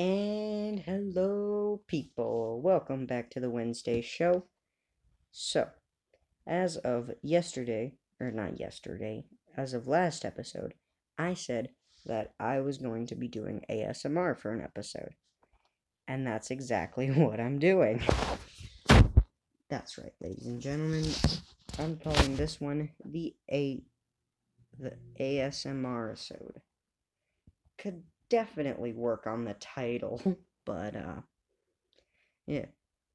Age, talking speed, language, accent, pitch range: 40-59, 105 wpm, English, American, 110-155 Hz